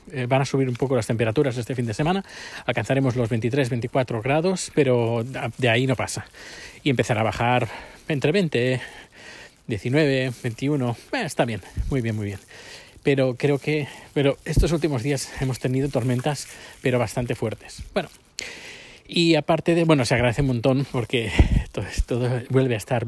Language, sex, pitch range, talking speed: Spanish, male, 125-150 Hz, 165 wpm